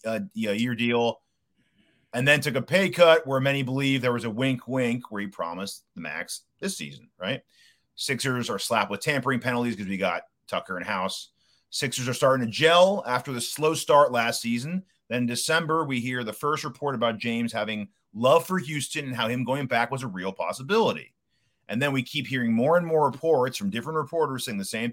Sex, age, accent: male, 30-49, American